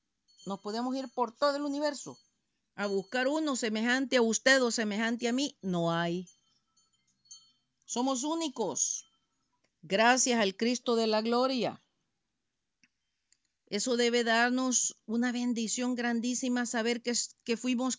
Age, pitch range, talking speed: 40-59, 220-250 Hz, 125 wpm